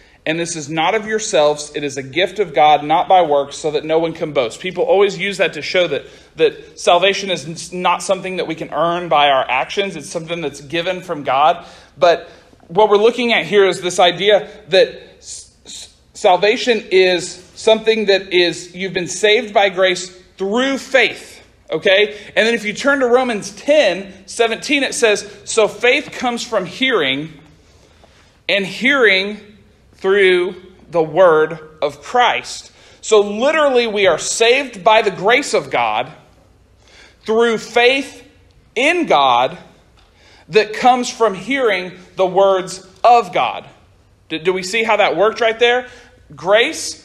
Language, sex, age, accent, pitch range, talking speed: English, male, 40-59, American, 175-235 Hz, 155 wpm